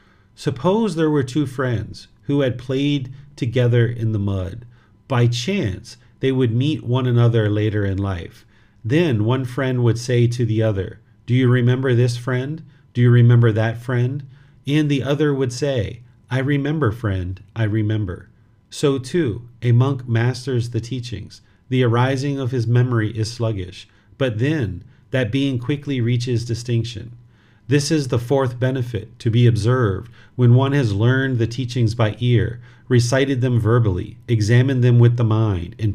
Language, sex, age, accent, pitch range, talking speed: English, male, 40-59, American, 110-130 Hz, 160 wpm